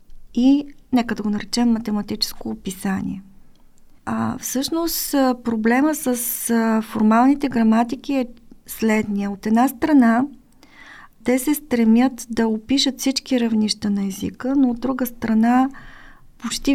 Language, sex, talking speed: Bulgarian, female, 115 wpm